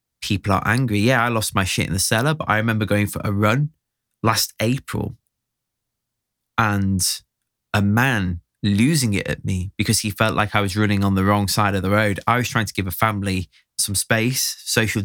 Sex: male